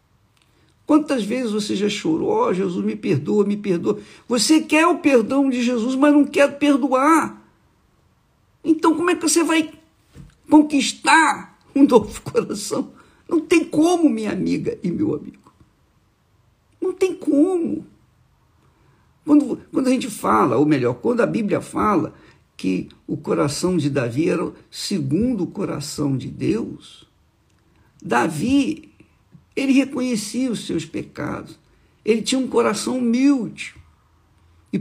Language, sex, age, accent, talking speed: Portuguese, male, 60-79, Brazilian, 135 wpm